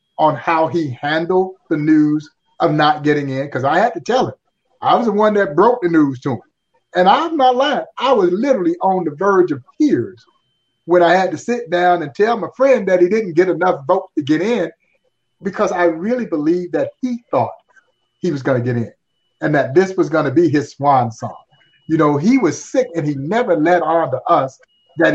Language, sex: English, male